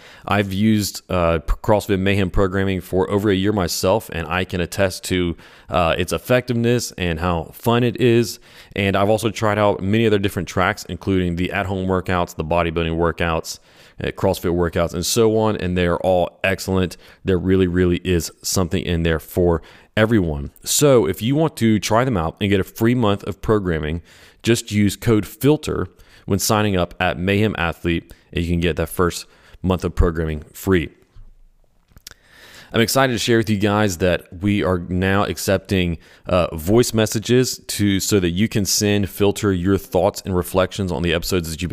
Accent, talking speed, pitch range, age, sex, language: American, 180 wpm, 90-105 Hz, 30-49, male, English